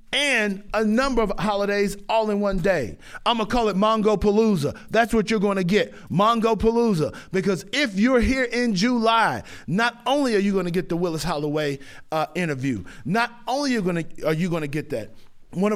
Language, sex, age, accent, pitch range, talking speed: English, male, 50-69, American, 155-220 Hz, 195 wpm